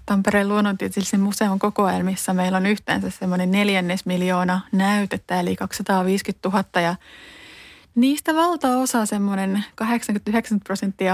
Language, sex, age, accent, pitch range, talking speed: Finnish, female, 20-39, native, 190-225 Hz, 95 wpm